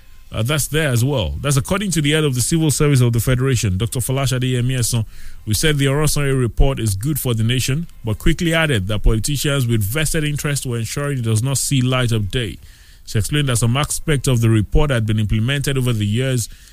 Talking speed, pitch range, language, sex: 220 wpm, 105-135 Hz, English, male